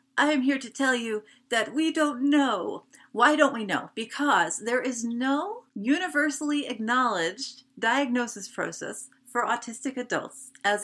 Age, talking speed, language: 40-59, 145 wpm, English